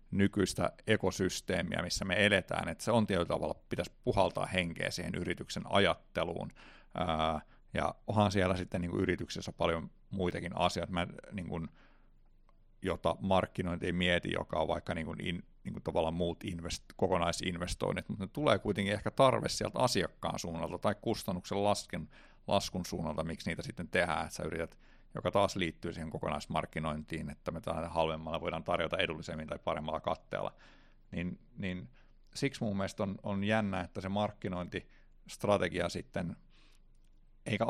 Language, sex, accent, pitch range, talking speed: Finnish, male, native, 85-105 Hz, 140 wpm